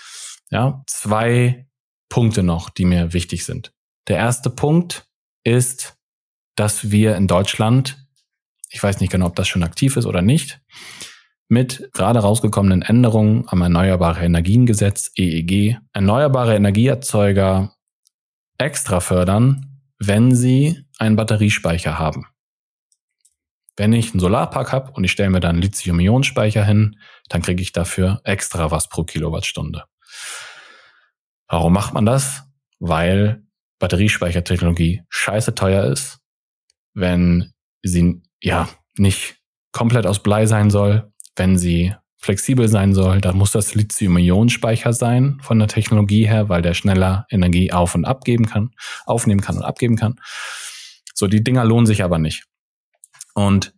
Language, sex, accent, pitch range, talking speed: German, male, German, 95-120 Hz, 135 wpm